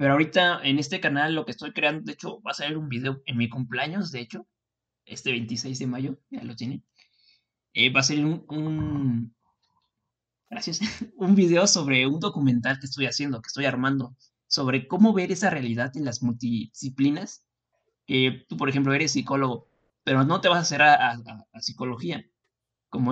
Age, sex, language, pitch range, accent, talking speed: 20-39, male, Spanish, 125-155 Hz, Mexican, 185 wpm